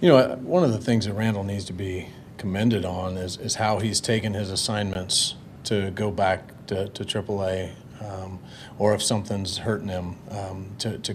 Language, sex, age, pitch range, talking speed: English, male, 40-59, 95-110 Hz, 190 wpm